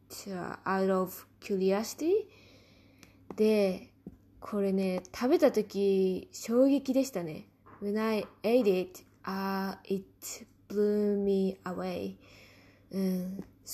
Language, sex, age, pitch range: Japanese, female, 20-39, 190-230 Hz